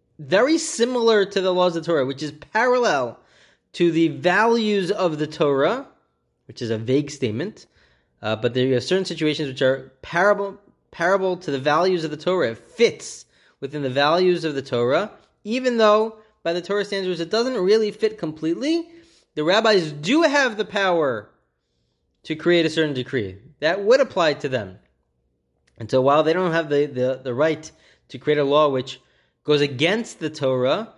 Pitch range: 125-180 Hz